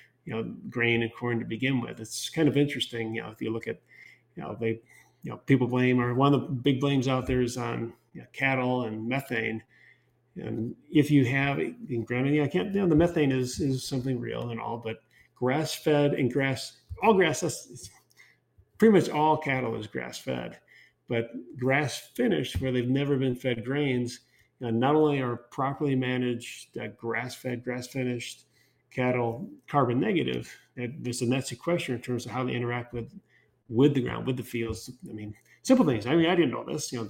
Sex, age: male, 40-59